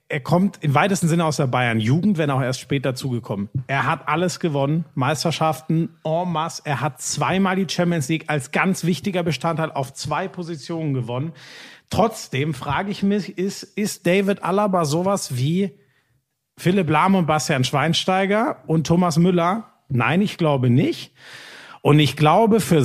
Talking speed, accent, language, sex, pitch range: 160 wpm, German, German, male, 140-185 Hz